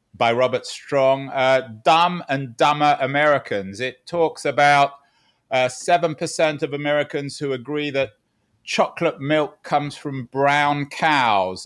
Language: English